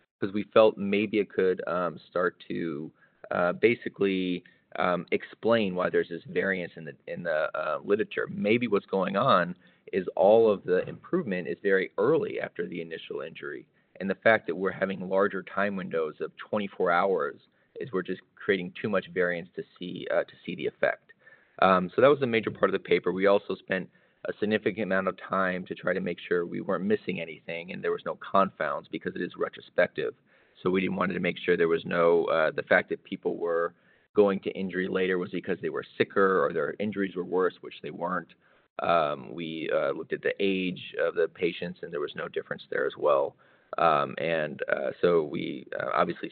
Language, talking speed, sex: English, 205 wpm, male